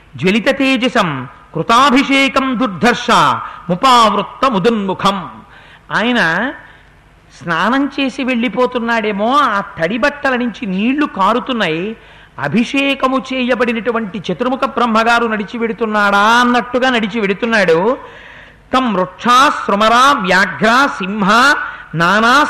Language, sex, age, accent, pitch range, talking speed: Telugu, male, 50-69, native, 210-265 Hz, 75 wpm